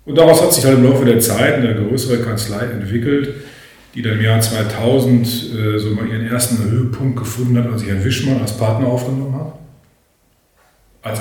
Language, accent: German, German